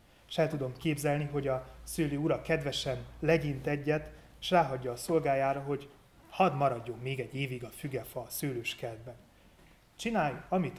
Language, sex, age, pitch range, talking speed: Hungarian, male, 30-49, 125-165 Hz, 150 wpm